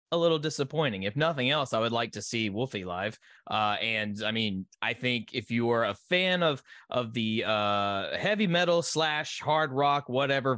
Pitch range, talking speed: 120-175 Hz, 195 wpm